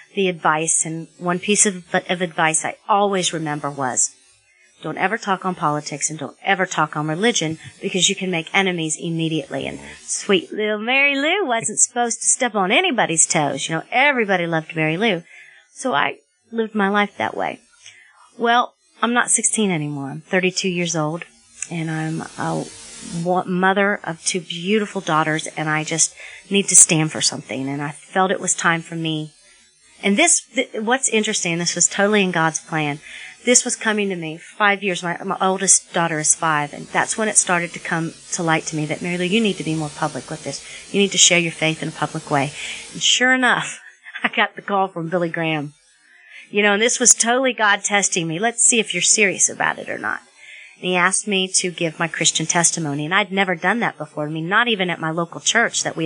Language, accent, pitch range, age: English, American, 160-205 Hz, 40-59